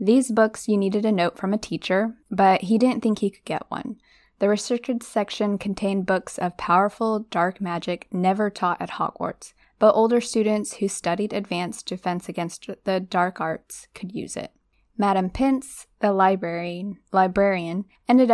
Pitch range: 175-220 Hz